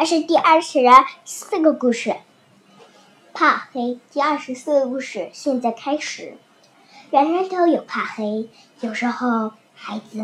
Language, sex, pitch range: Chinese, male, 235-305 Hz